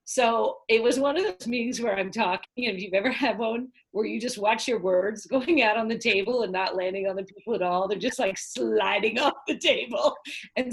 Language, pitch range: English, 180-275 Hz